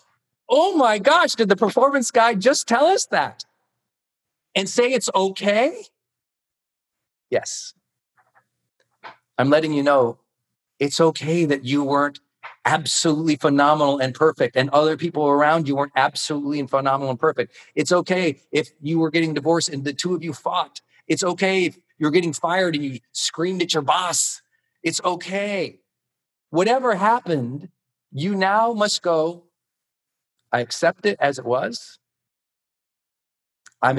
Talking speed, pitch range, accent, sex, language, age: 140 wpm, 135-180 Hz, American, male, English, 40-59